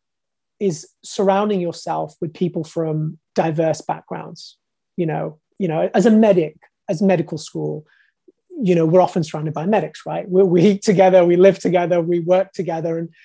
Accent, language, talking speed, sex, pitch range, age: British, English, 170 wpm, male, 160-195 Hz, 20-39